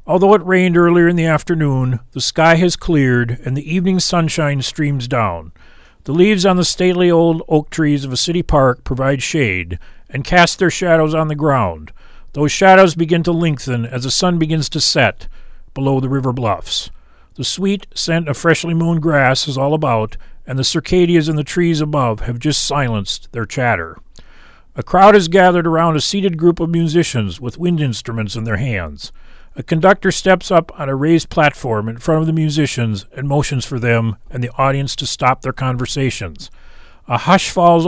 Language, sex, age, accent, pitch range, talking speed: English, male, 40-59, American, 125-170 Hz, 185 wpm